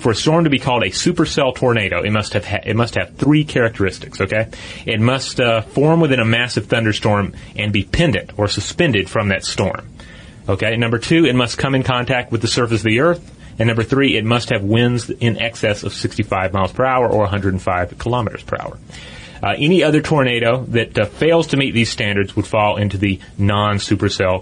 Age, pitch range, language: 30-49, 100-120 Hz, English